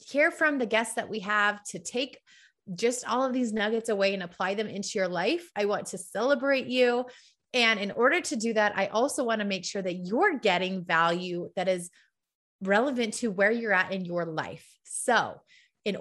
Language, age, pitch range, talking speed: English, 20-39, 195-260 Hz, 200 wpm